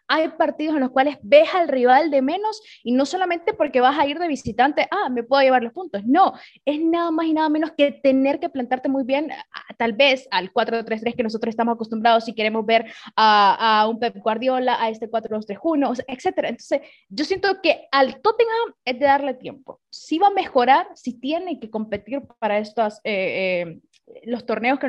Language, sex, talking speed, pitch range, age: Spanish, female, 200 wpm, 235-310 Hz, 20-39